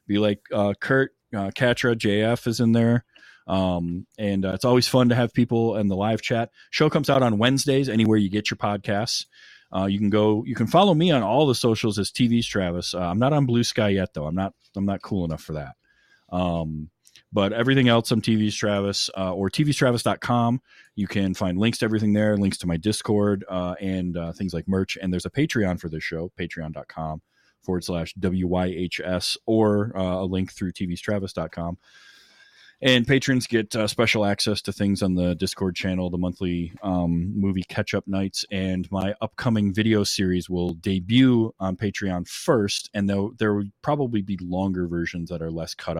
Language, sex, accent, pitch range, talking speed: English, male, American, 90-115 Hz, 195 wpm